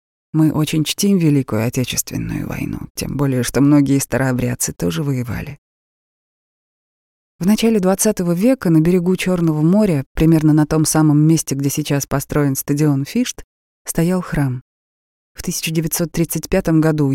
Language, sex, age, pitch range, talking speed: Russian, female, 20-39, 140-175 Hz, 125 wpm